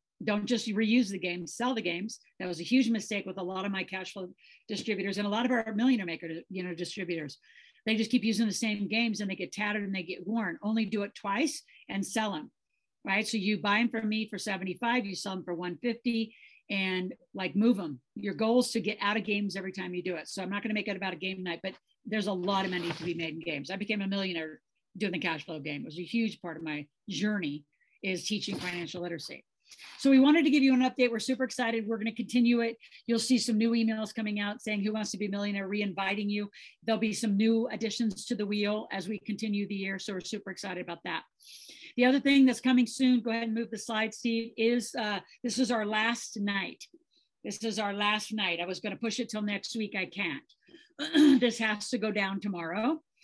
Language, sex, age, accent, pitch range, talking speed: English, female, 50-69, American, 190-230 Hz, 250 wpm